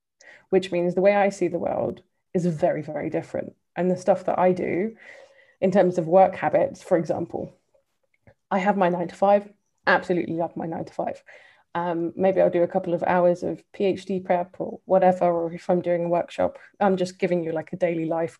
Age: 20-39